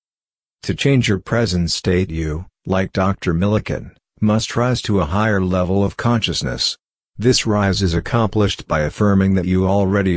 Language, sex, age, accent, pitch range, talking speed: English, male, 50-69, American, 90-105 Hz, 155 wpm